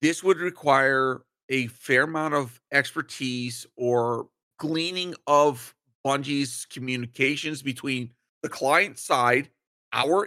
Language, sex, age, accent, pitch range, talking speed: English, male, 40-59, American, 130-185 Hz, 105 wpm